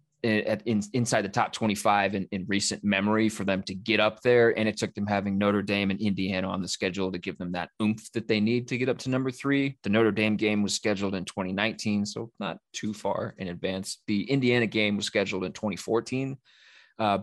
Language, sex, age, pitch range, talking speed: English, male, 20-39, 100-115 Hz, 215 wpm